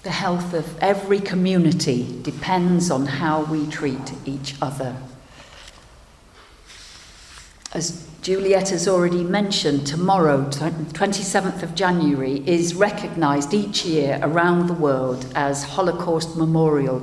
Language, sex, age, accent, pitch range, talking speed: English, female, 50-69, British, 140-195 Hz, 110 wpm